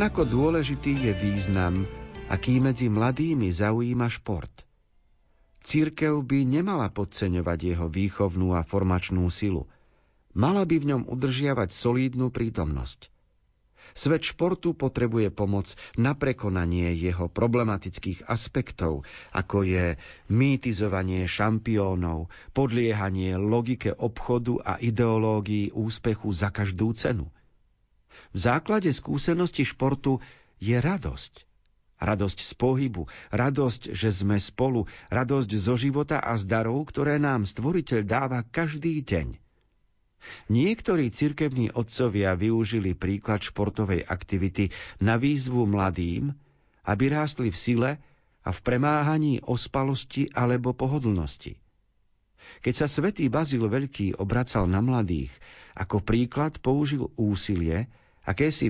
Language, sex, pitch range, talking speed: Slovak, male, 100-135 Hz, 105 wpm